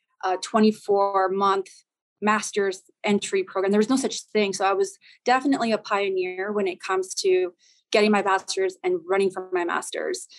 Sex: female